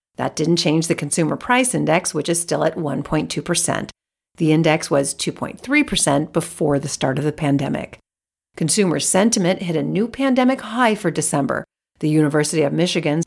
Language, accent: English, American